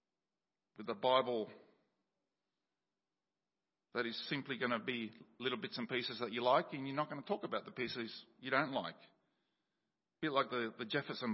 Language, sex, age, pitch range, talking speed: English, male, 50-69, 160-220 Hz, 180 wpm